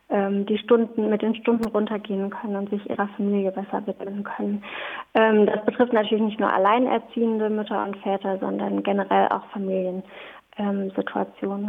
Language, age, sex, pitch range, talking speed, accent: German, 20-39, female, 195-225 Hz, 145 wpm, German